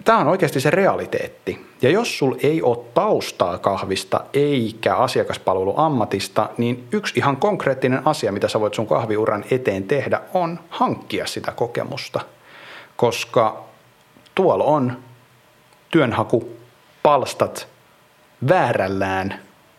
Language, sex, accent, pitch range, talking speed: Finnish, male, native, 110-160 Hz, 110 wpm